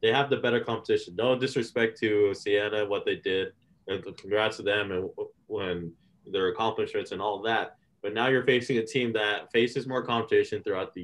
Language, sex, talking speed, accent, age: English, male, 190 wpm, American, 20-39